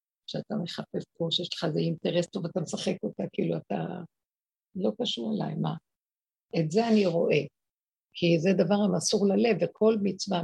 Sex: female